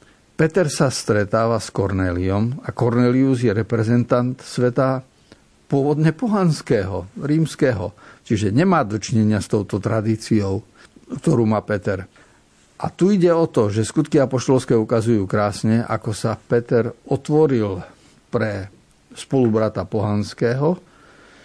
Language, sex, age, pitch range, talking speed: Slovak, male, 50-69, 110-135 Hz, 110 wpm